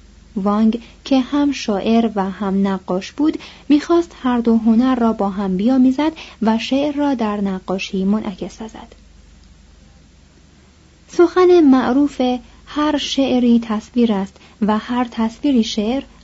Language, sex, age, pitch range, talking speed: Persian, female, 30-49, 205-265 Hz, 120 wpm